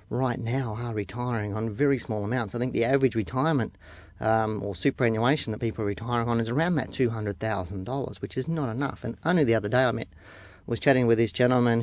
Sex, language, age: male, English, 40-59